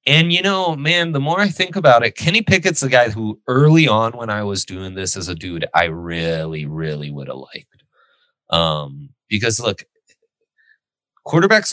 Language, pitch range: English, 100-150 Hz